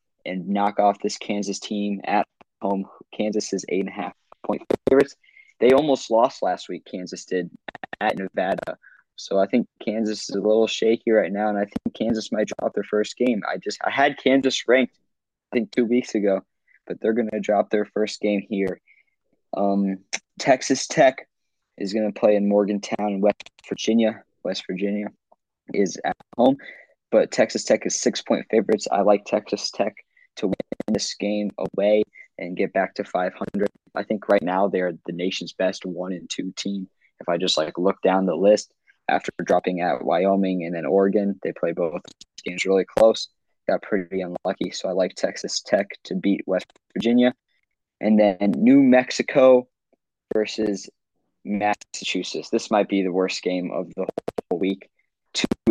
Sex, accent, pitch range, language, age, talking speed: male, American, 95-110 Hz, English, 20-39, 175 wpm